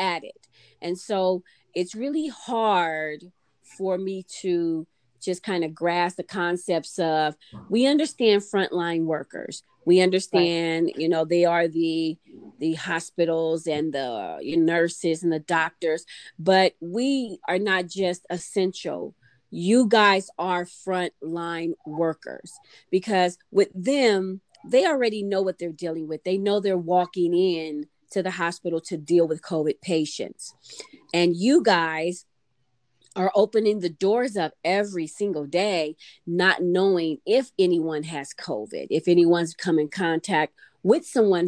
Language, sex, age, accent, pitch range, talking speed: English, female, 30-49, American, 165-195 Hz, 135 wpm